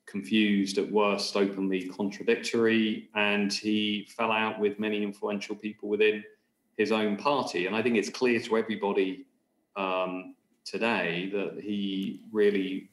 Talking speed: 135 wpm